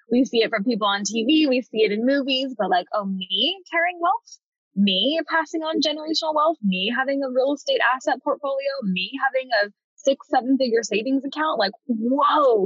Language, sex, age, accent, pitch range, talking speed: English, female, 10-29, American, 190-270 Hz, 190 wpm